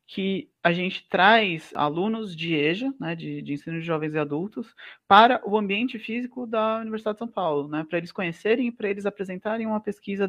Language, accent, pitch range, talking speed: Portuguese, Brazilian, 165-225 Hz, 190 wpm